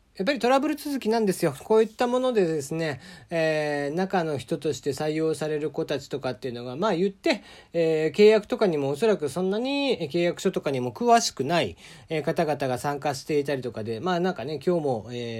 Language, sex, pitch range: Japanese, male, 130-185 Hz